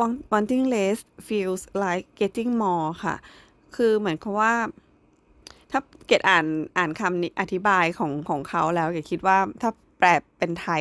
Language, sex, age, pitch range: Thai, female, 20-39, 170-210 Hz